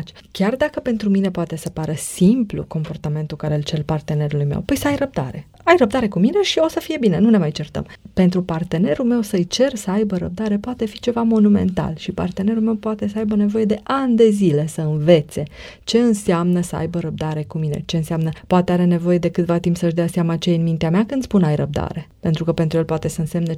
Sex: female